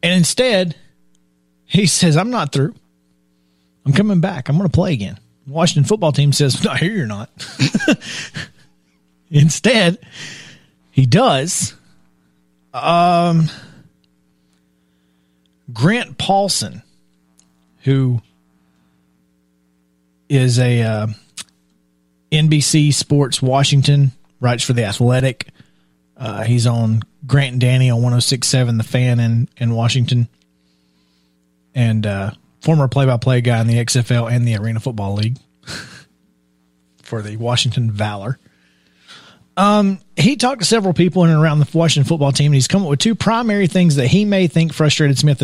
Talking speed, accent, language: 130 wpm, American, English